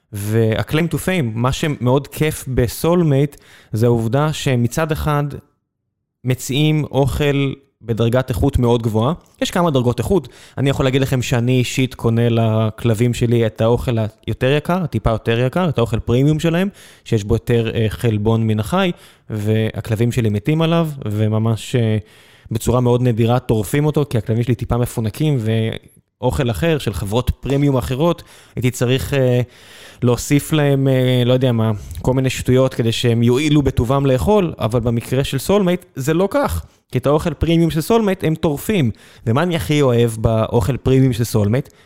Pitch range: 115-140 Hz